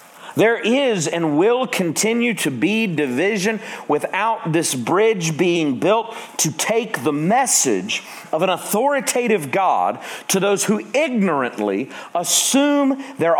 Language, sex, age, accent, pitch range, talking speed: English, male, 40-59, American, 155-220 Hz, 120 wpm